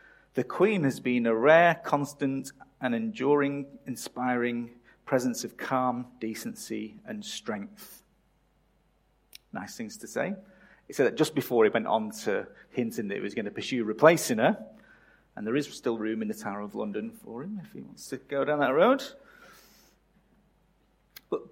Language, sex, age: English, male, 40-59